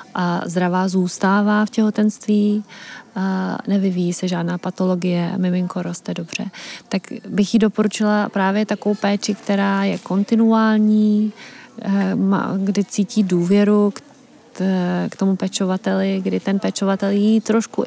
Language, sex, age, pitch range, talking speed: Czech, female, 30-49, 195-220 Hz, 115 wpm